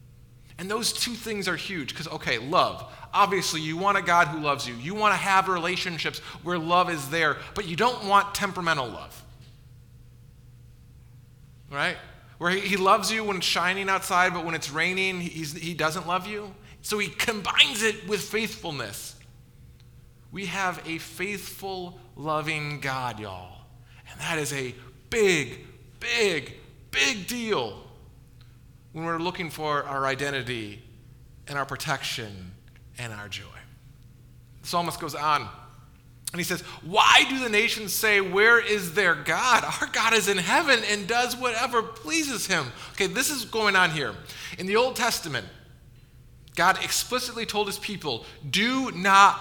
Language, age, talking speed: English, 30-49, 150 wpm